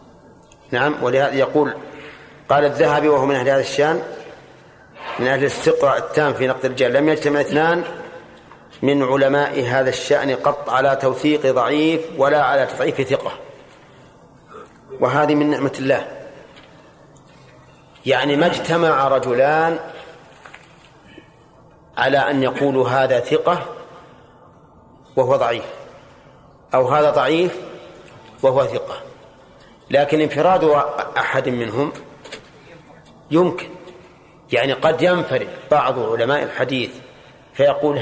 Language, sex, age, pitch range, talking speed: Arabic, male, 40-59, 135-175 Hz, 100 wpm